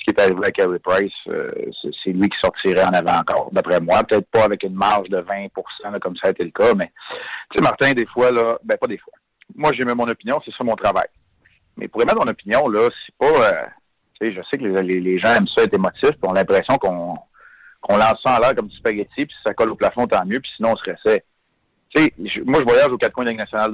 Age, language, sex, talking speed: 40-59, French, male, 275 wpm